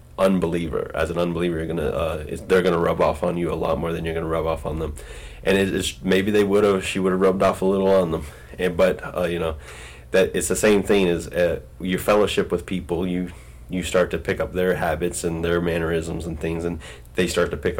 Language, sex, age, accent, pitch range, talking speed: English, male, 30-49, American, 80-95 Hz, 250 wpm